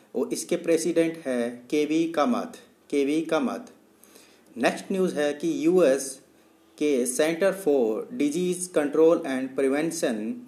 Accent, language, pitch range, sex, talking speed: native, Hindi, 140-185 Hz, male, 120 wpm